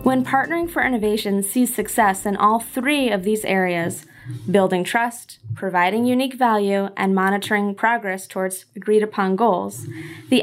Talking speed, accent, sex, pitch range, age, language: 145 wpm, American, female, 185-230 Hz, 20-39, English